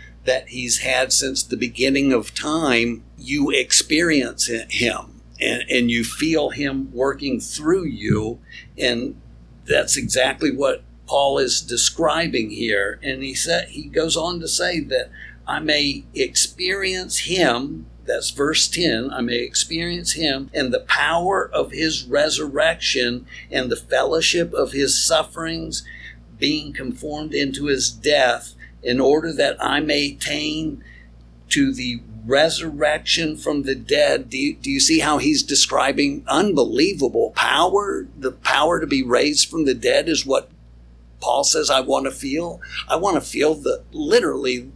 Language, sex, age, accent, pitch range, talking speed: English, male, 60-79, American, 130-165 Hz, 145 wpm